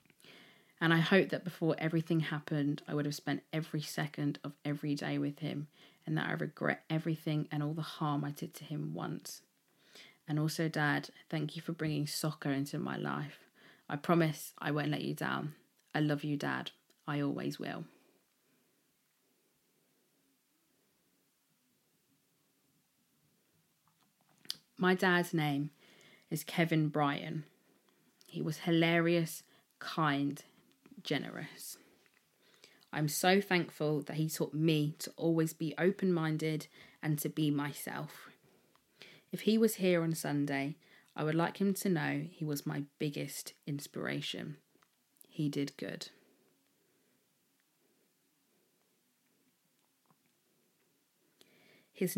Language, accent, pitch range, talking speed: English, British, 145-170 Hz, 120 wpm